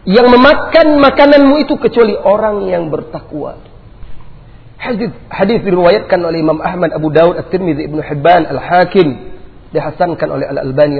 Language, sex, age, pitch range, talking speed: Malay, male, 40-59, 155-250 Hz, 120 wpm